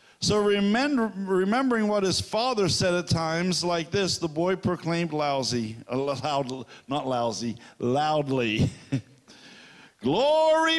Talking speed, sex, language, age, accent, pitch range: 100 wpm, male, English, 50-69, American, 130-190 Hz